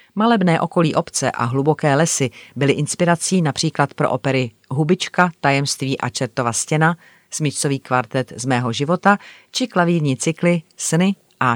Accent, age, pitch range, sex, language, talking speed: native, 40-59, 130-165 Hz, female, Czech, 135 wpm